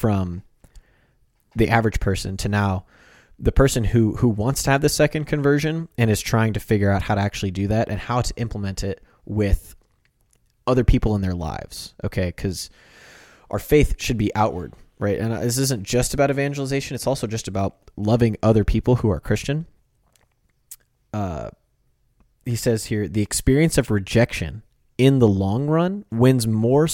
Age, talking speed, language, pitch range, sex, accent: 20-39, 170 wpm, English, 100-125 Hz, male, American